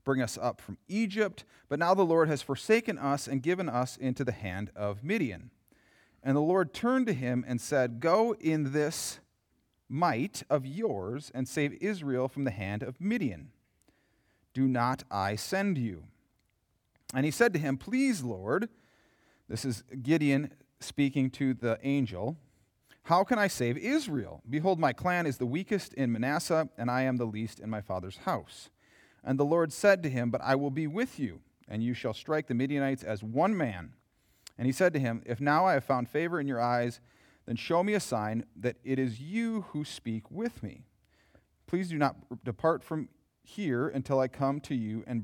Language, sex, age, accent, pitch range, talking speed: English, male, 40-59, American, 120-160 Hz, 190 wpm